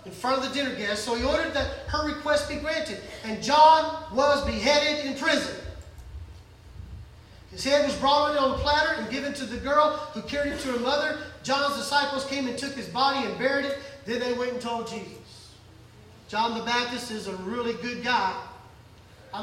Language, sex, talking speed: English, male, 195 wpm